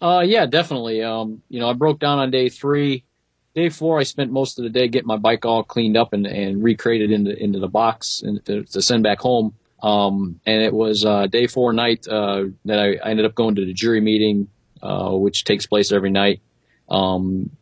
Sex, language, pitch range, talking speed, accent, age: male, English, 95-110 Hz, 220 wpm, American, 40-59